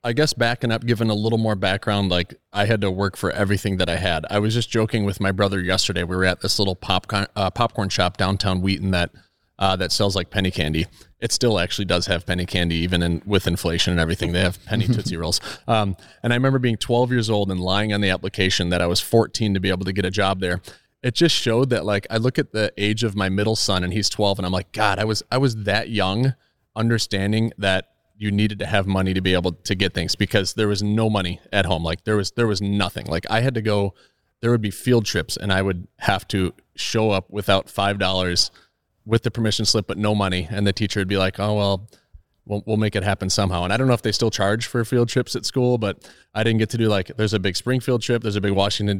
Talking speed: 255 wpm